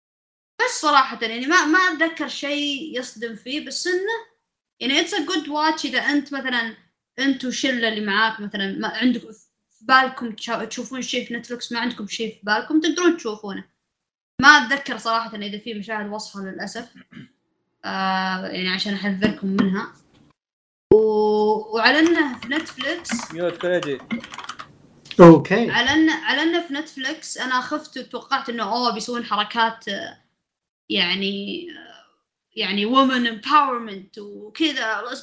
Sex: female